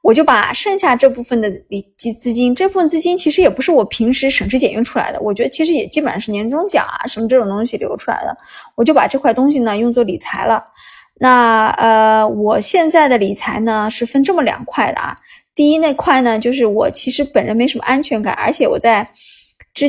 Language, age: Chinese, 20-39